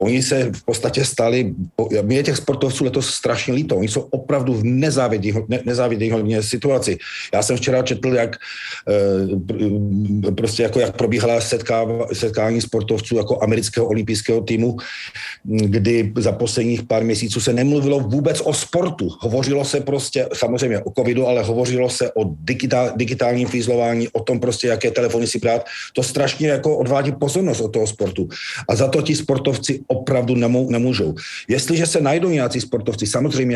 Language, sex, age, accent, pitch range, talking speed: Czech, male, 40-59, native, 110-130 Hz, 155 wpm